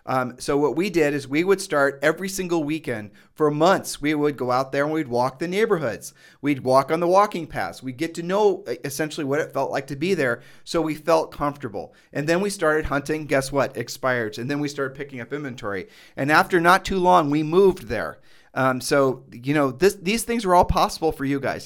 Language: English